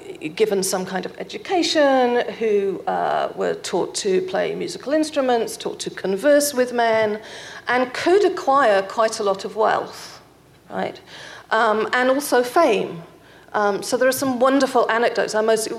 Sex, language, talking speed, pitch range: female, English, 150 wpm, 205-285 Hz